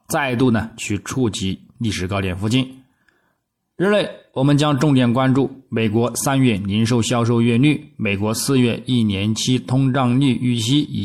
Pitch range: 100-130 Hz